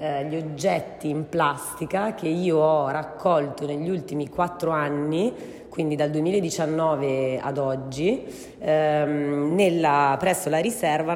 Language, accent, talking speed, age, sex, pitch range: Italian, native, 110 wpm, 30-49, female, 145-175 Hz